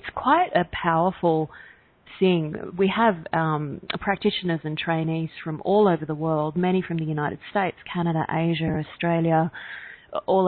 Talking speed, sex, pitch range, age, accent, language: 145 wpm, female, 160-175 Hz, 30-49, Australian, English